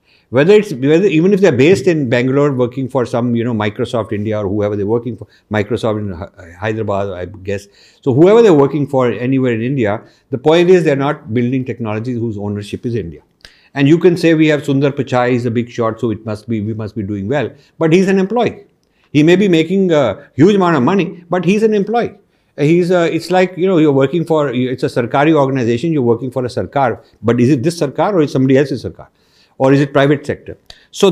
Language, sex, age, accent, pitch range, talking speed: English, male, 50-69, Indian, 115-155 Hz, 230 wpm